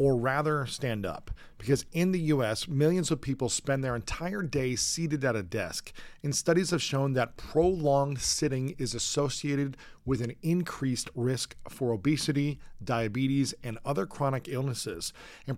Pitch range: 125-160 Hz